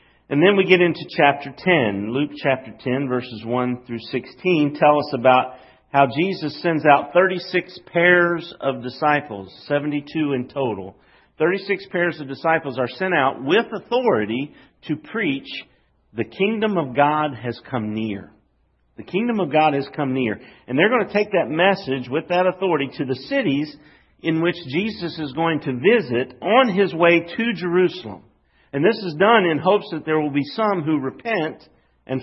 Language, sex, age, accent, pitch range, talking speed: English, male, 50-69, American, 125-175 Hz, 170 wpm